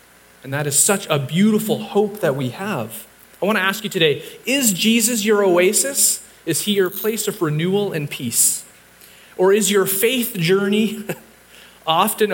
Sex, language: male, English